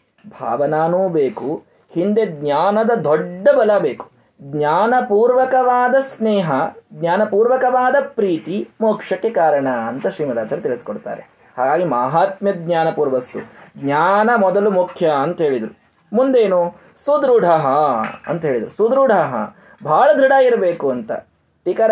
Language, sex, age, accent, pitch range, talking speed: Kannada, male, 20-39, native, 155-225 Hz, 95 wpm